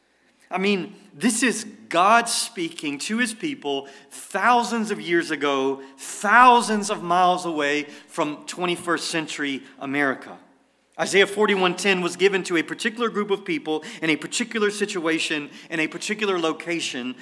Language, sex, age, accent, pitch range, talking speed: English, male, 30-49, American, 145-210 Hz, 135 wpm